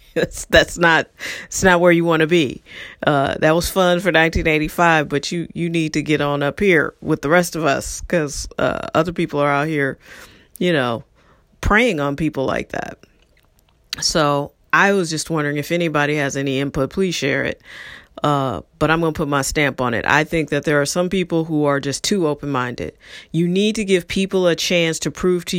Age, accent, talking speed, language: 40-59, American, 210 wpm, English